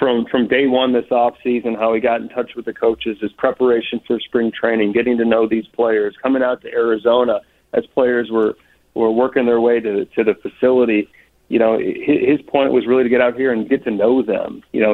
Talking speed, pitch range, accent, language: 235 wpm, 115-130 Hz, American, English